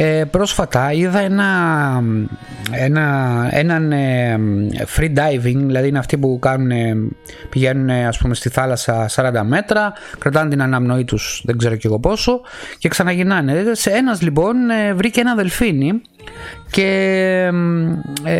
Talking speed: 135 wpm